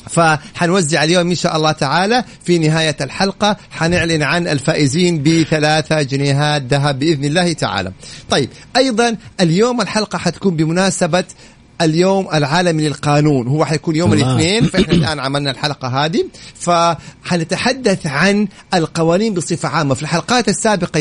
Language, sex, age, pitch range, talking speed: Arabic, male, 50-69, 150-185 Hz, 125 wpm